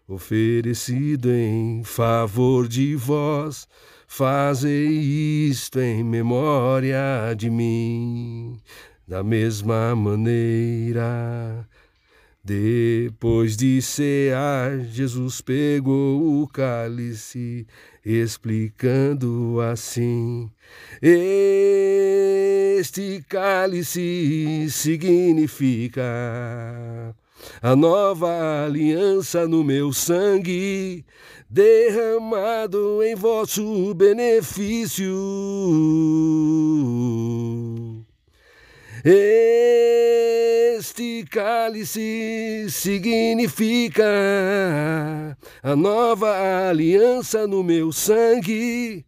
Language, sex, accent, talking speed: Portuguese, male, Brazilian, 55 wpm